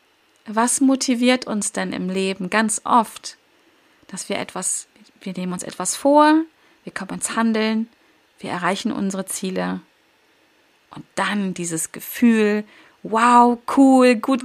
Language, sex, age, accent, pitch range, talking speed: German, female, 30-49, German, 195-240 Hz, 130 wpm